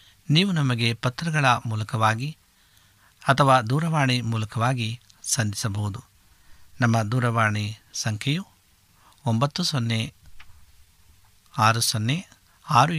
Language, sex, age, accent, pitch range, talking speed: Kannada, male, 60-79, native, 105-135 Hz, 75 wpm